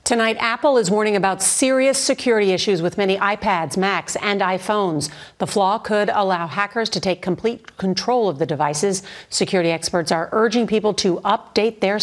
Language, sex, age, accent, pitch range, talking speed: English, female, 50-69, American, 165-215 Hz, 170 wpm